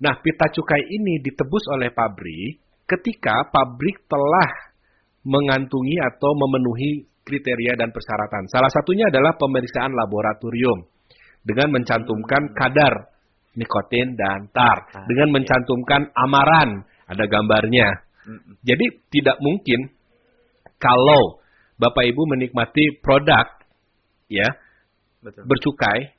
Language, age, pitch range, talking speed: Indonesian, 40-59, 110-145 Hz, 95 wpm